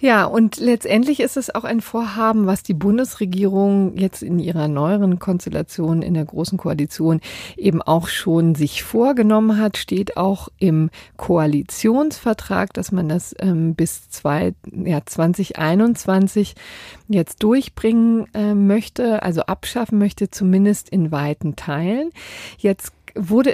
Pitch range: 165-210 Hz